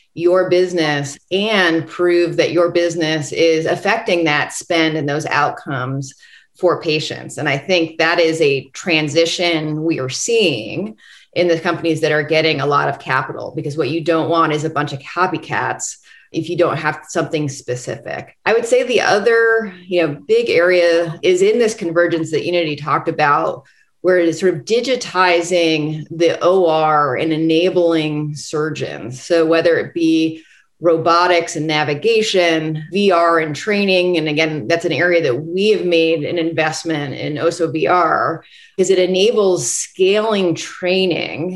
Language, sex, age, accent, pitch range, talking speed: English, female, 30-49, American, 155-180 Hz, 155 wpm